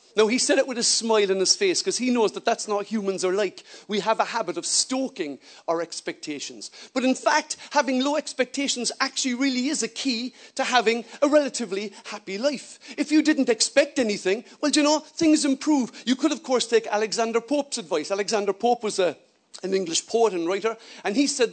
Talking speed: 205 wpm